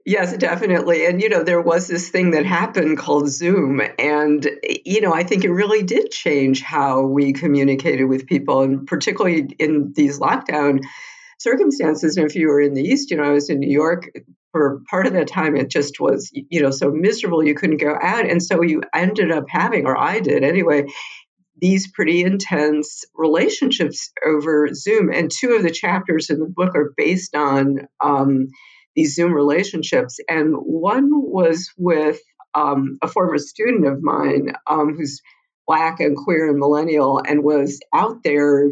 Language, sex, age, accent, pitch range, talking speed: English, female, 50-69, American, 145-185 Hz, 175 wpm